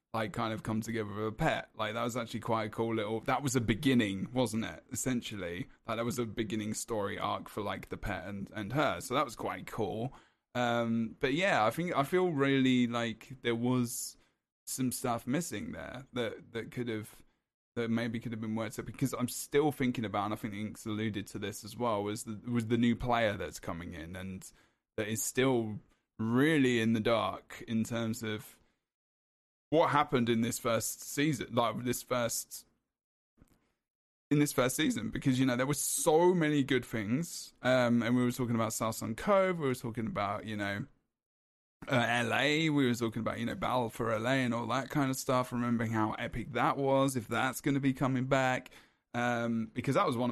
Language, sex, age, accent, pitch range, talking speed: English, male, 10-29, British, 110-125 Hz, 205 wpm